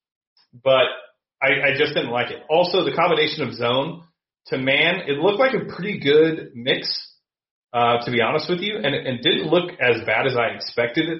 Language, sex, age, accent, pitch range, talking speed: English, male, 30-49, American, 115-155 Hz, 200 wpm